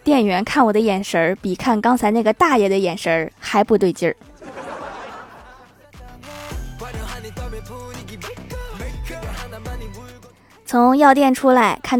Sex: female